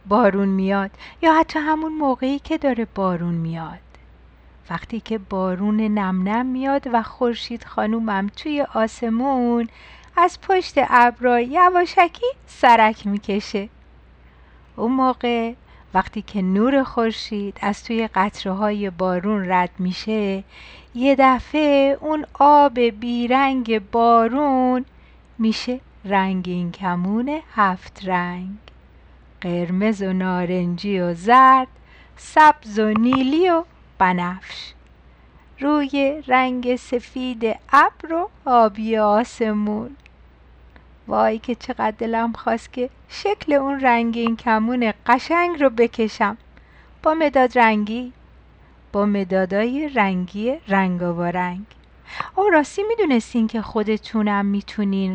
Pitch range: 190-260 Hz